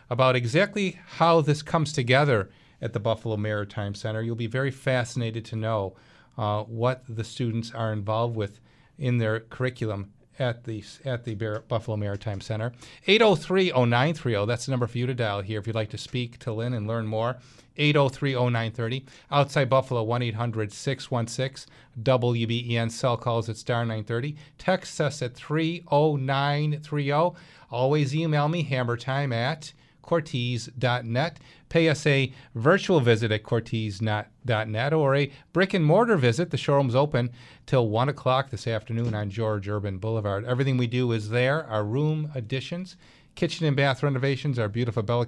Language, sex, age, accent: English, male, 40-59, American